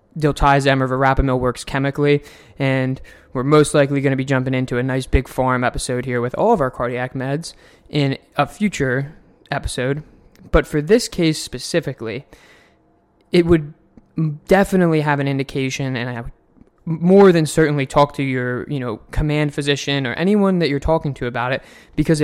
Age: 20-39